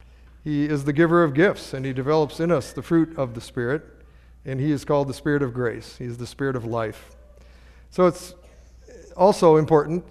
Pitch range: 130-165 Hz